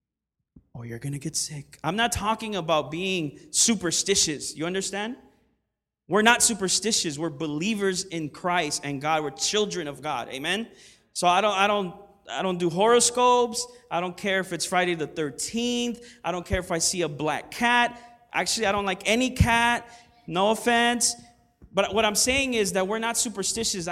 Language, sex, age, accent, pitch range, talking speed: English, male, 20-39, American, 155-220 Hz, 170 wpm